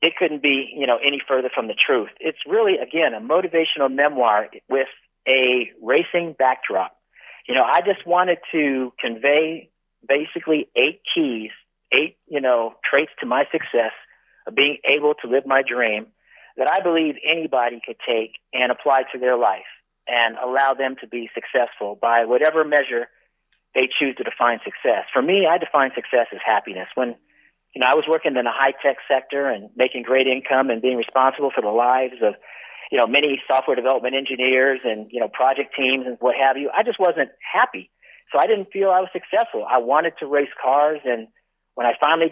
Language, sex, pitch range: English, male, 125-150 Hz